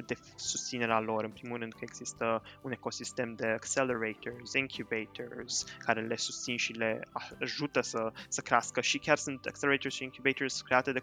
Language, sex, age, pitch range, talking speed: Romanian, male, 20-39, 115-130 Hz, 165 wpm